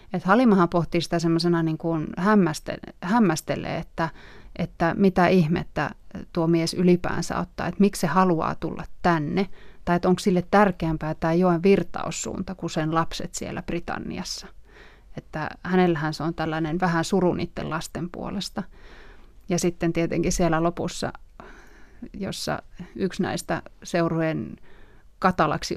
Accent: native